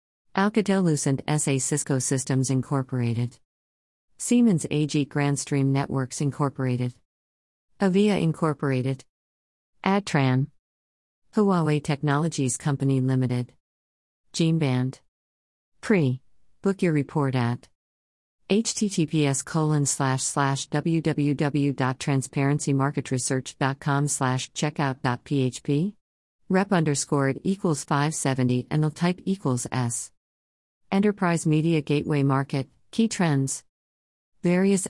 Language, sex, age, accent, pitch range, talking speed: English, female, 50-69, American, 125-155 Hz, 80 wpm